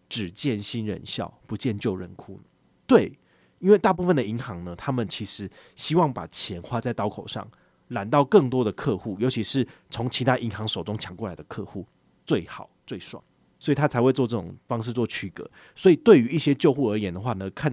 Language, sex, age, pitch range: Chinese, male, 30-49, 100-135 Hz